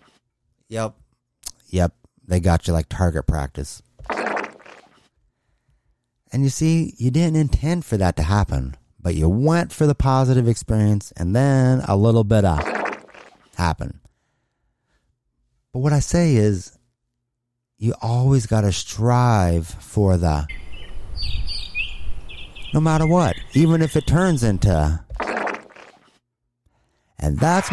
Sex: male